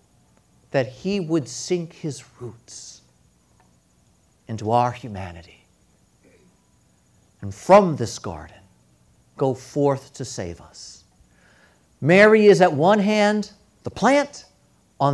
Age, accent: 50-69, American